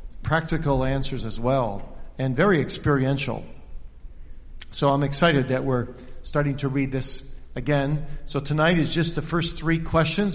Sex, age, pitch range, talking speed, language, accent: male, 50-69, 125-175 Hz, 145 wpm, English, American